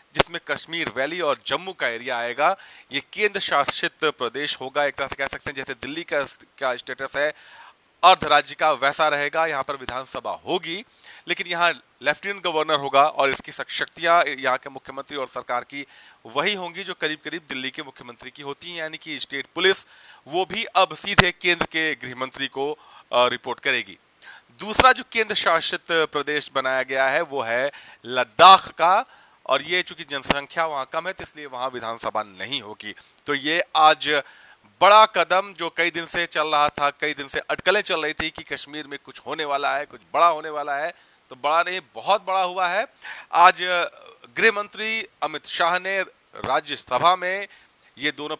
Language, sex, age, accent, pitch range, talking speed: Hindi, male, 30-49, native, 140-175 Hz, 180 wpm